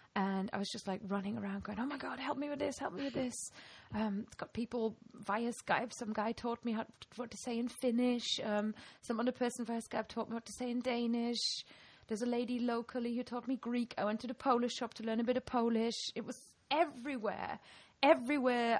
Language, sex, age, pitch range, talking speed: English, female, 20-39, 210-255 Hz, 225 wpm